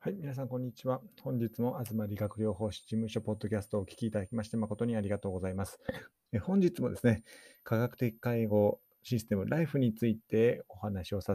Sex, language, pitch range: male, Japanese, 100-130 Hz